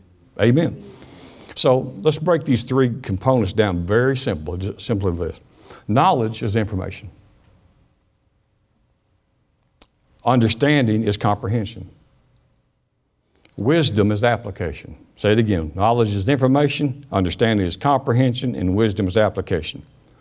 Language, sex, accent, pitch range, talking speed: English, male, American, 100-120 Hz, 100 wpm